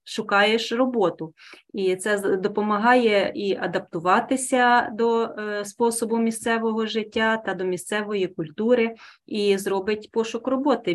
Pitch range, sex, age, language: 180-230 Hz, female, 30-49, Ukrainian